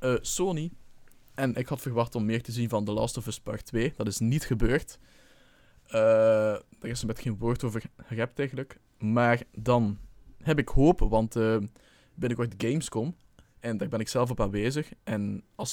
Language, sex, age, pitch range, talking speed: Dutch, male, 20-39, 110-125 Hz, 185 wpm